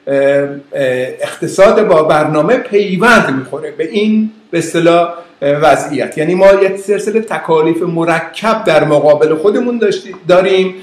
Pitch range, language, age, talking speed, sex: 160-200 Hz, Persian, 50-69, 110 wpm, male